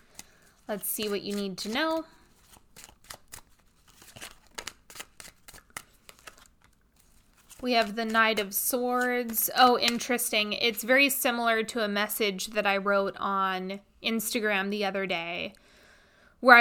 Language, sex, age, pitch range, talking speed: English, female, 20-39, 210-260 Hz, 110 wpm